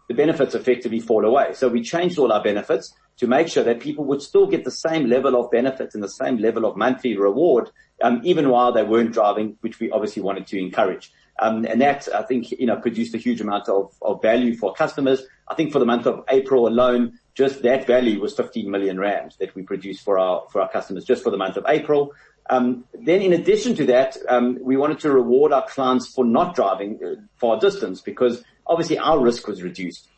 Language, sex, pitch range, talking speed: English, male, 115-145 Hz, 220 wpm